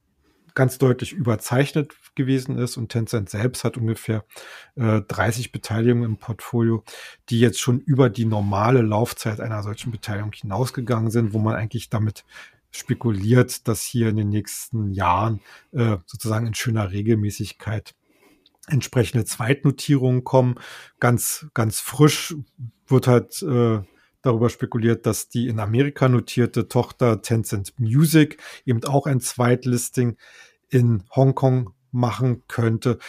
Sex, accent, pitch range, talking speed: male, German, 110-130 Hz, 125 wpm